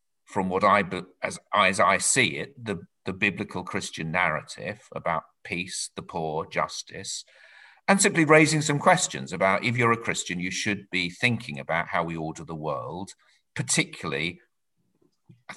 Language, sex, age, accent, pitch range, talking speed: English, male, 50-69, British, 90-120 Hz, 155 wpm